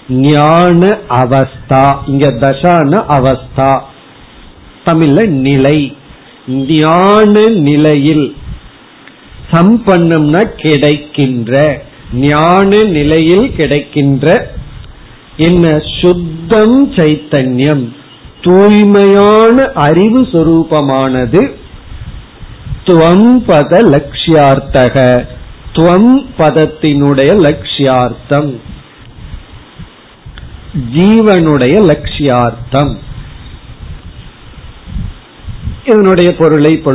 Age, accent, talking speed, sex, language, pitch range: 50-69, native, 35 wpm, male, Tamil, 140-180 Hz